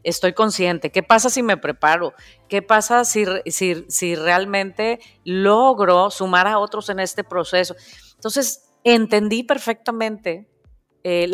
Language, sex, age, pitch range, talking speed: Spanish, female, 40-59, 180-230 Hz, 120 wpm